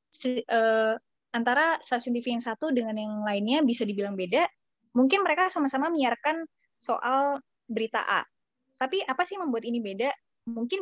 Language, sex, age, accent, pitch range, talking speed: Indonesian, female, 20-39, native, 215-270 Hz, 155 wpm